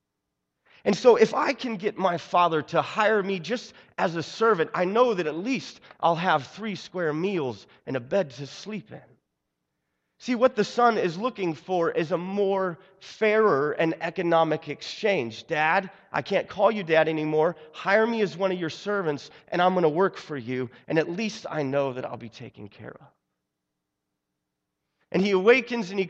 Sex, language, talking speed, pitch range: male, English, 190 wpm, 125-195 Hz